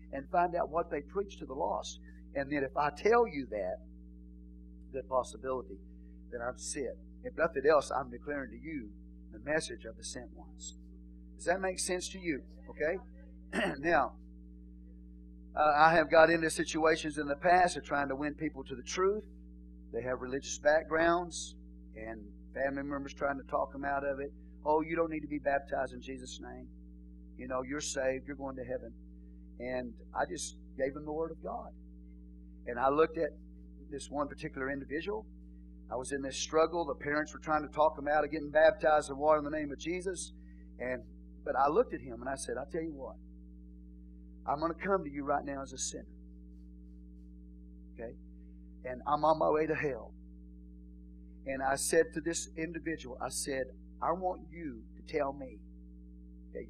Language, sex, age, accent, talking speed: English, male, 50-69, American, 190 wpm